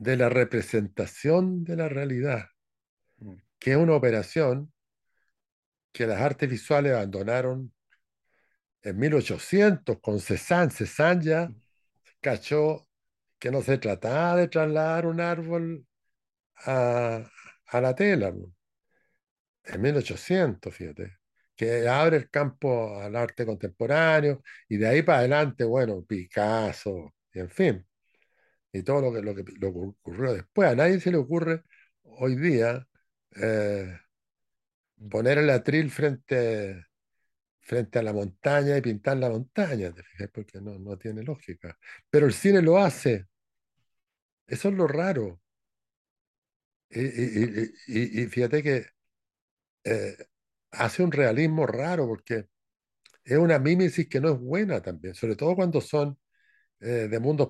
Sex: male